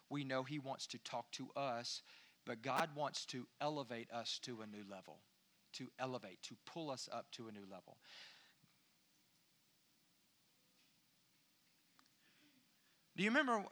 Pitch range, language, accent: 145-210 Hz, English, American